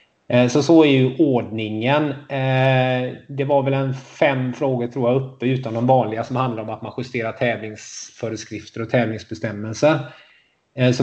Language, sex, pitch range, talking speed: Swedish, male, 115-135 Hz, 145 wpm